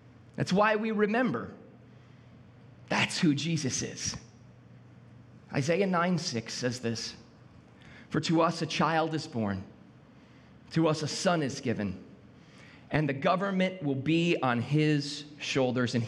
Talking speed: 130 wpm